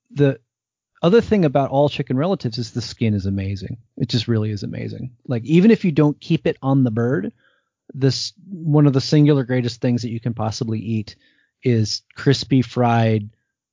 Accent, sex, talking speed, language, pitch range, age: American, male, 185 wpm, English, 110-135 Hz, 30-49